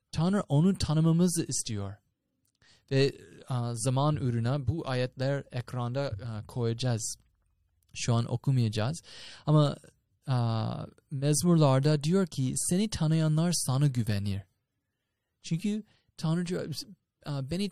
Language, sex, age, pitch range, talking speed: Turkish, male, 20-39, 120-160 Hz, 100 wpm